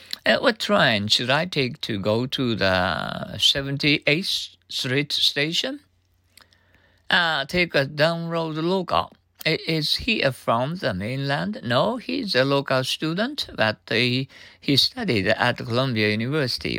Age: 60-79